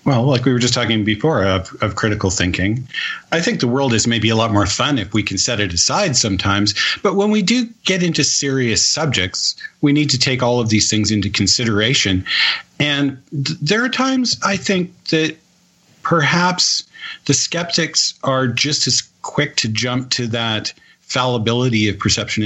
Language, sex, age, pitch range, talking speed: English, male, 40-59, 105-145 Hz, 180 wpm